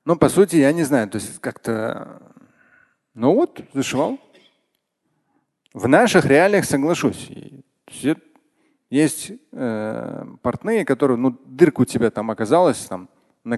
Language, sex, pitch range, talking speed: Russian, male, 125-190 Hz, 130 wpm